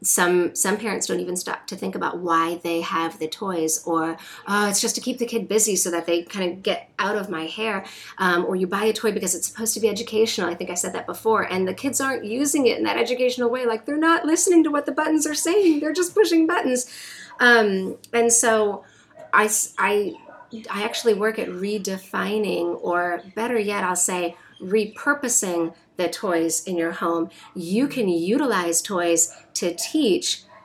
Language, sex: English, female